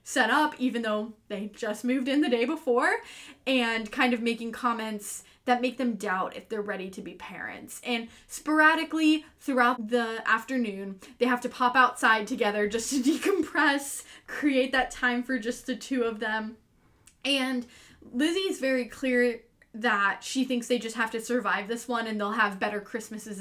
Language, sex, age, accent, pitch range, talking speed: English, female, 10-29, American, 225-275 Hz, 175 wpm